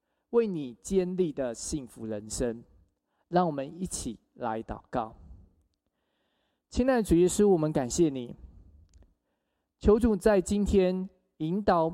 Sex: male